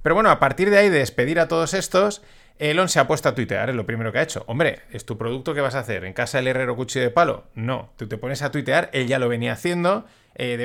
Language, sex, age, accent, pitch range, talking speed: Spanish, male, 30-49, Spanish, 120-155 Hz, 285 wpm